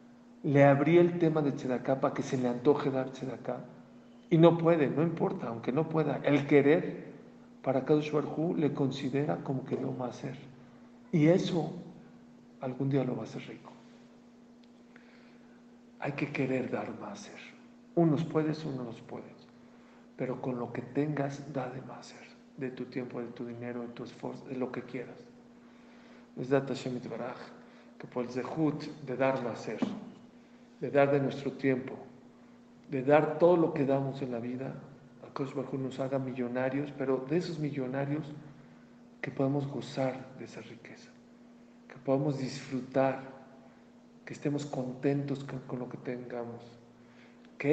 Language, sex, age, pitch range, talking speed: English, male, 50-69, 125-155 Hz, 155 wpm